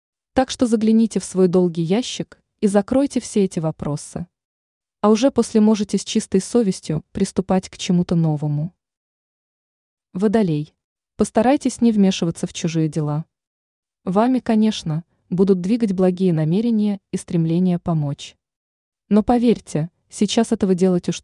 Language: Russian